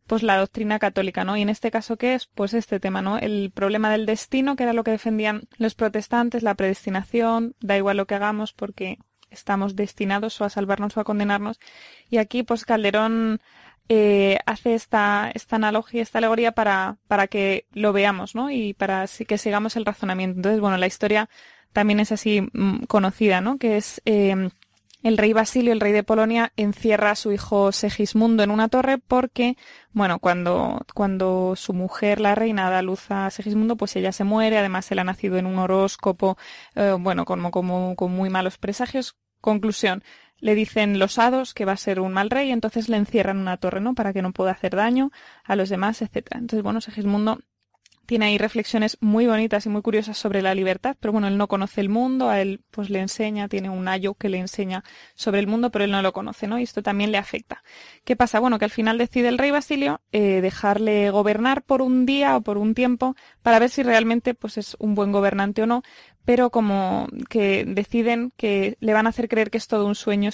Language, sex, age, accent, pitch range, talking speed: Spanish, female, 20-39, Spanish, 200-230 Hz, 210 wpm